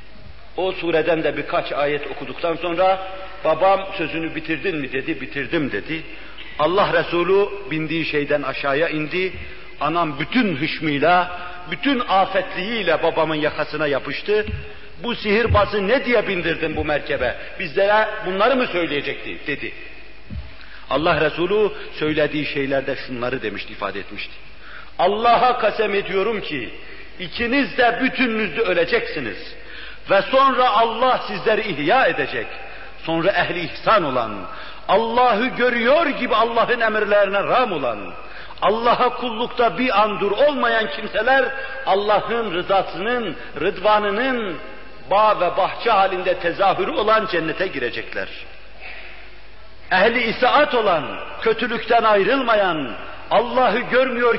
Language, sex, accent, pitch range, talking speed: Turkish, male, native, 165-240 Hz, 110 wpm